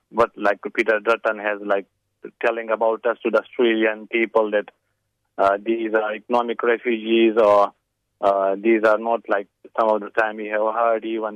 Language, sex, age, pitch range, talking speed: English, male, 30-49, 105-115 Hz, 175 wpm